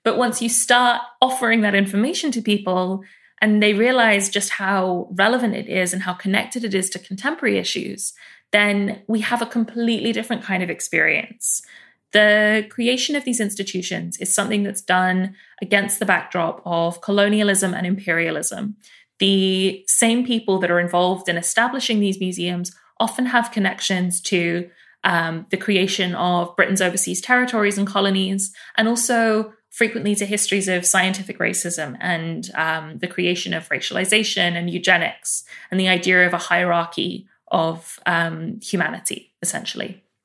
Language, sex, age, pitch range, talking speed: English, female, 20-39, 185-220 Hz, 150 wpm